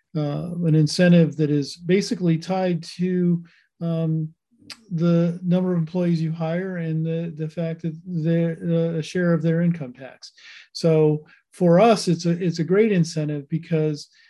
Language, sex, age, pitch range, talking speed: English, male, 40-59, 150-175 Hz, 150 wpm